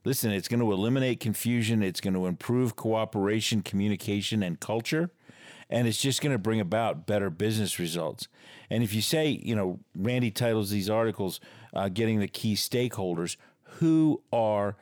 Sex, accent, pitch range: male, American, 100-120 Hz